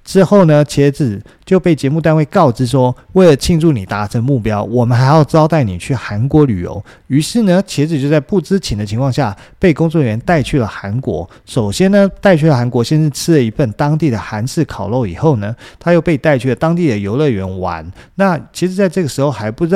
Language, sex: Chinese, male